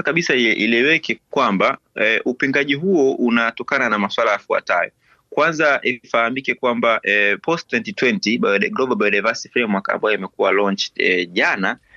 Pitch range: 95-120 Hz